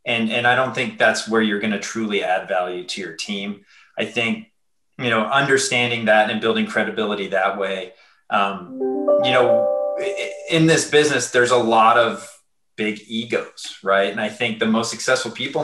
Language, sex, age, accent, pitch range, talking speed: English, male, 20-39, American, 105-125 Hz, 180 wpm